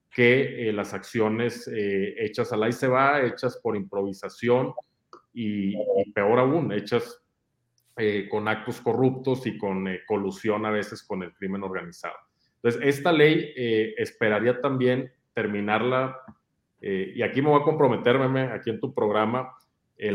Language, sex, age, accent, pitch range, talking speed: Spanish, male, 40-59, Mexican, 105-130 Hz, 155 wpm